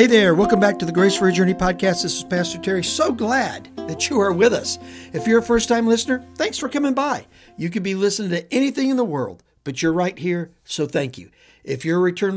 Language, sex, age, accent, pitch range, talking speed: English, male, 60-79, American, 155-205 Hz, 245 wpm